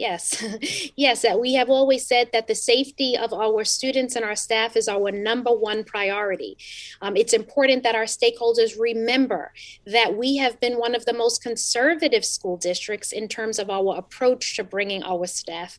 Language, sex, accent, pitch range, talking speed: English, female, American, 210-255 Hz, 180 wpm